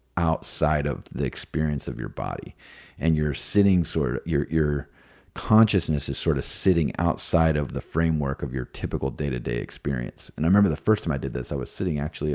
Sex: male